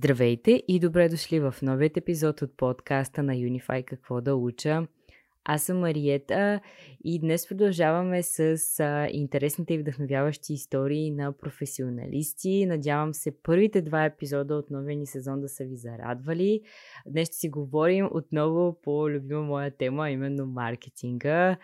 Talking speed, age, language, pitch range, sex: 140 wpm, 20-39, Bulgarian, 140-170 Hz, female